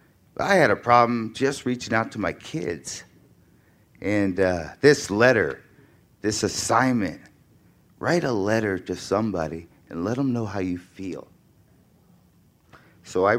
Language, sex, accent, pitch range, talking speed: English, male, American, 90-110 Hz, 135 wpm